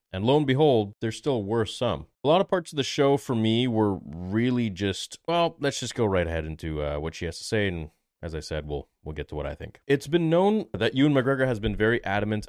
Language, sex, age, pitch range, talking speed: English, male, 30-49, 90-120 Hz, 260 wpm